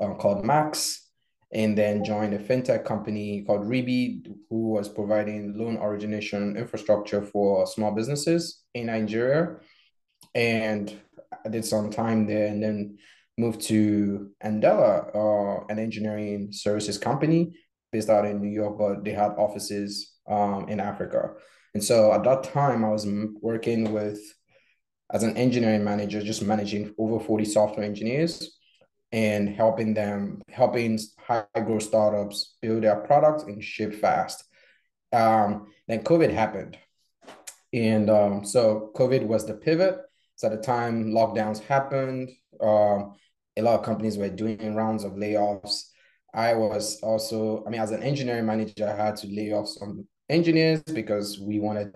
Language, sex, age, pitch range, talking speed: English, male, 20-39, 105-115 Hz, 145 wpm